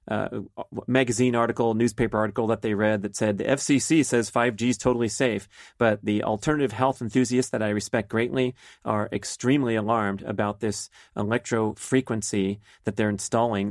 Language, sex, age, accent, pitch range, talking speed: English, male, 30-49, American, 100-115 Hz, 160 wpm